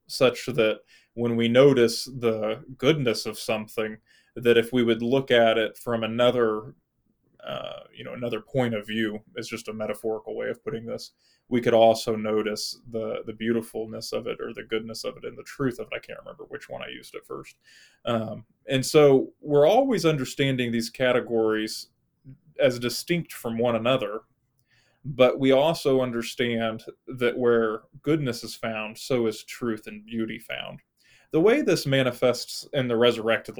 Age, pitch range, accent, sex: 20-39, 110-135 Hz, American, male